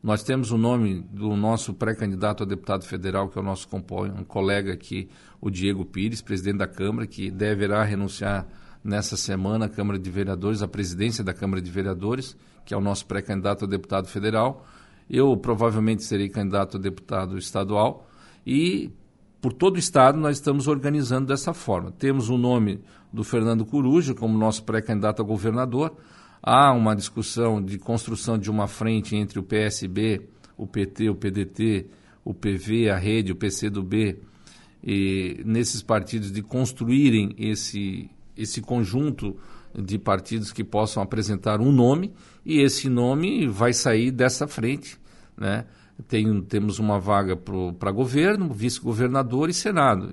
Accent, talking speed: Brazilian, 150 wpm